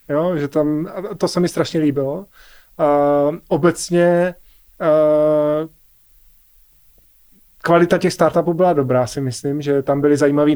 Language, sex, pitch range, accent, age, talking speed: Czech, male, 140-155 Hz, native, 20-39, 125 wpm